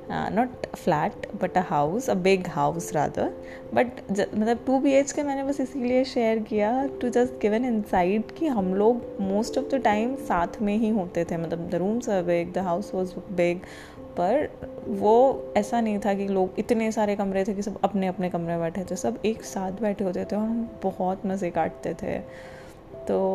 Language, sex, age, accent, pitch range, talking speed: Hindi, female, 20-39, native, 180-215 Hz, 190 wpm